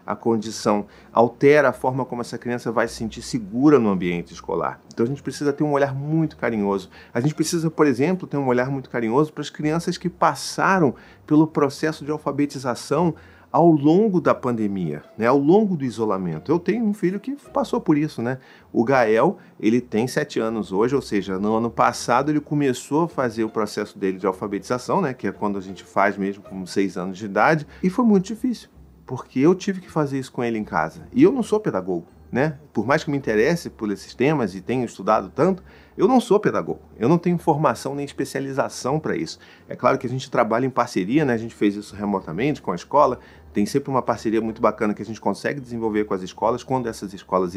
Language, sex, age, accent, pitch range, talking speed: Portuguese, male, 40-59, Brazilian, 105-155 Hz, 215 wpm